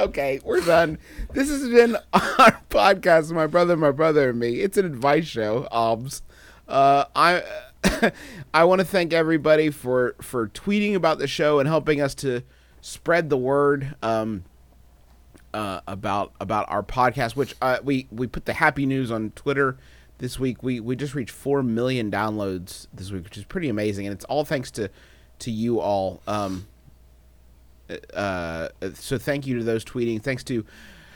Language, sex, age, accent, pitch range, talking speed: English, male, 30-49, American, 95-150 Hz, 170 wpm